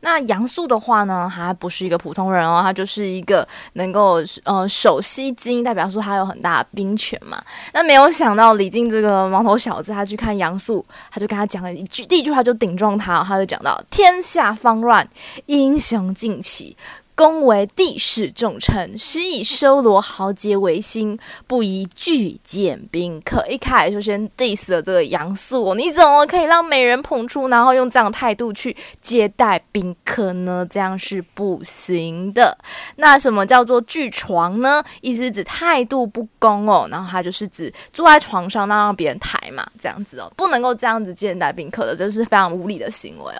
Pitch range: 190-255 Hz